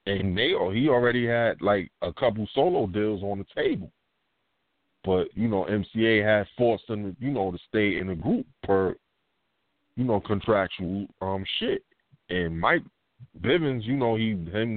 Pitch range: 95-120 Hz